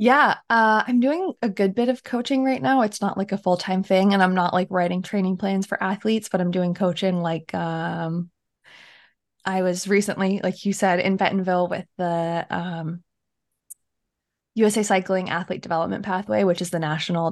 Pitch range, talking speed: 175-225 Hz, 180 wpm